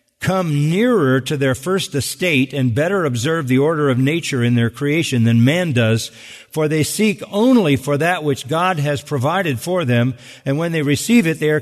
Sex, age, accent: male, 50-69, American